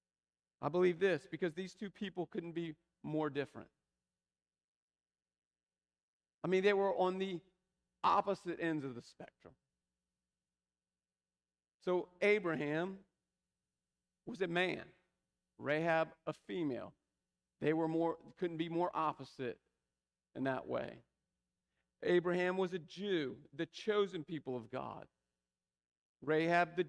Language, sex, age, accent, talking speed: English, male, 40-59, American, 115 wpm